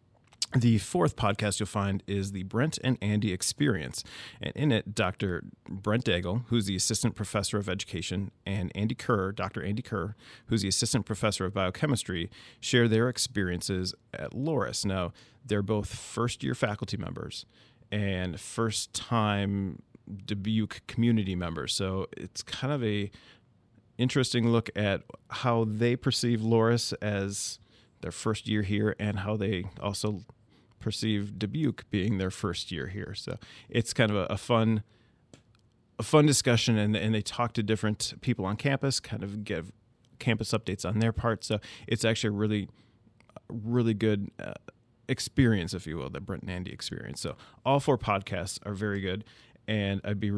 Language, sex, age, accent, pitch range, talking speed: English, male, 40-59, American, 100-115 Hz, 155 wpm